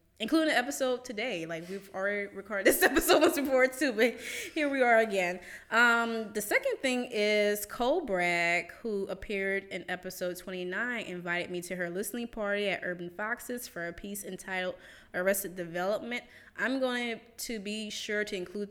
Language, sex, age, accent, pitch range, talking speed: English, female, 20-39, American, 185-230 Hz, 165 wpm